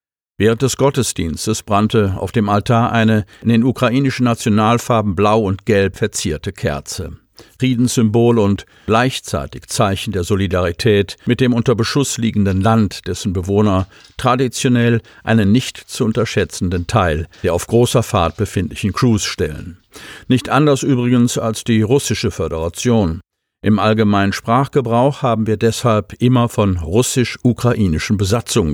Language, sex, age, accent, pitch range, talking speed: German, male, 50-69, German, 95-120 Hz, 125 wpm